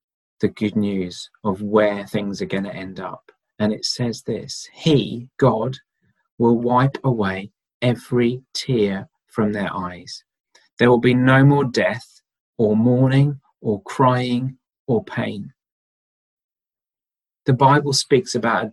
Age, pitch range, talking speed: 40-59, 115-145 Hz, 135 wpm